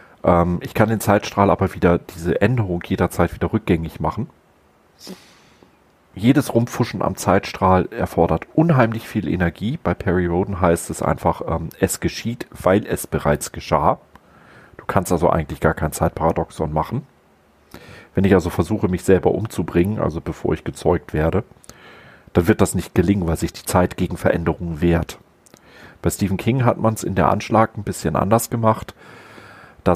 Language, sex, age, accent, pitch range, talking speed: German, male, 40-59, German, 85-105 Hz, 160 wpm